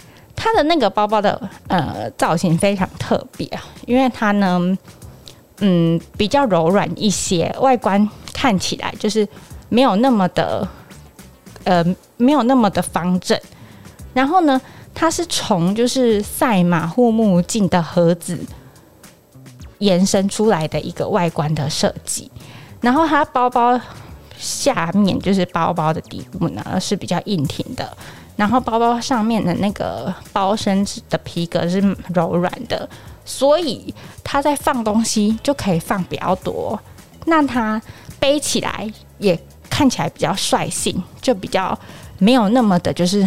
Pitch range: 175-240 Hz